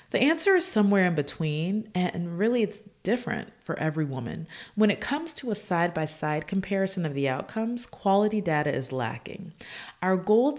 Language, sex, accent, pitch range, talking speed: English, female, American, 135-185 Hz, 165 wpm